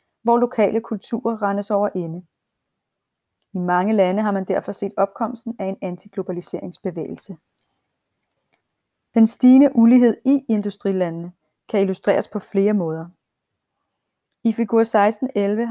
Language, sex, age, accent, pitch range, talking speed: Danish, female, 30-49, native, 190-235 Hz, 115 wpm